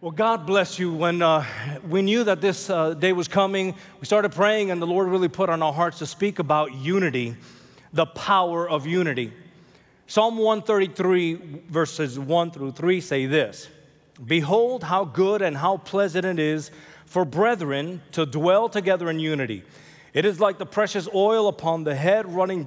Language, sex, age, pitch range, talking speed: English, male, 30-49, 160-200 Hz, 175 wpm